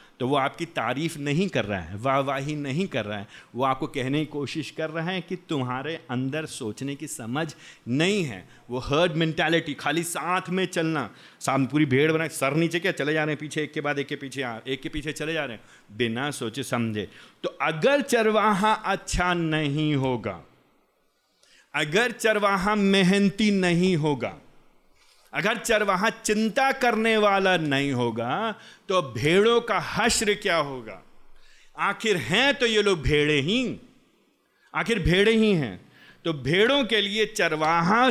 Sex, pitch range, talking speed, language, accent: male, 135-190 Hz, 165 wpm, Hindi, native